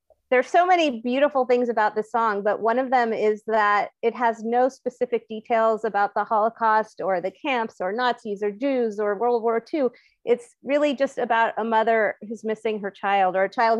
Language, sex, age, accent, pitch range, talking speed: English, female, 30-49, American, 210-245 Hz, 205 wpm